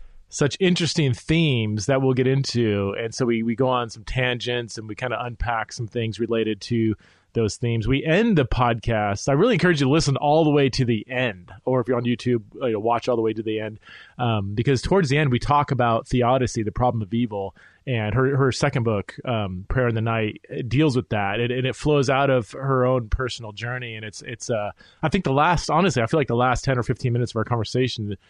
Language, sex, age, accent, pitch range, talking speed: English, male, 30-49, American, 110-135 Hz, 235 wpm